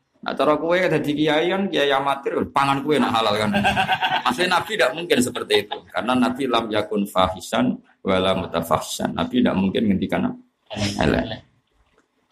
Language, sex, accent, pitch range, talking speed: Indonesian, male, native, 100-150 Hz, 95 wpm